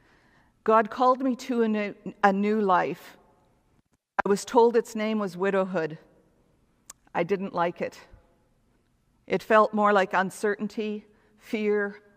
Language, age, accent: English, 50-69, American